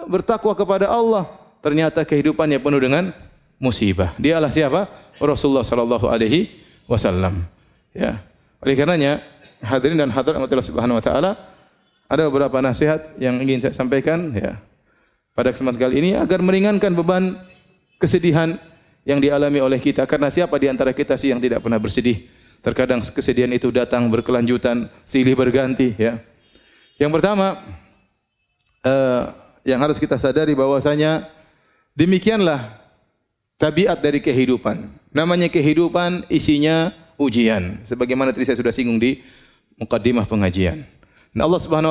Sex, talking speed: male, 125 wpm